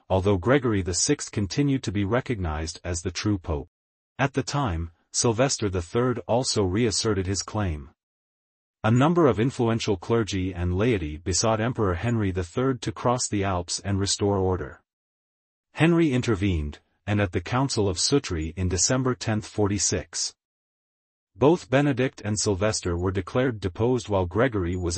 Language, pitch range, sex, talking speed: English, 90-120 Hz, male, 140 wpm